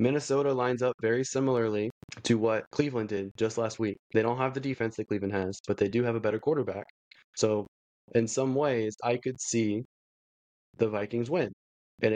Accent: American